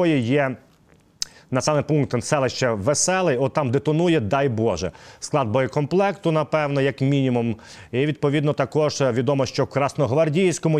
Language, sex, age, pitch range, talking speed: Ukrainian, male, 30-49, 125-160 Hz, 130 wpm